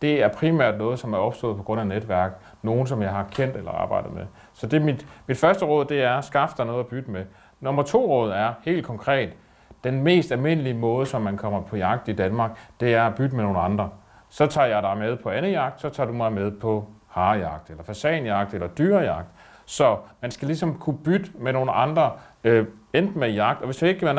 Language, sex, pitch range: Danish, male, 110-150 Hz